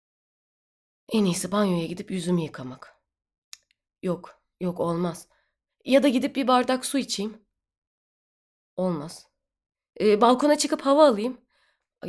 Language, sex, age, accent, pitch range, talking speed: Turkish, female, 20-39, native, 190-275 Hz, 115 wpm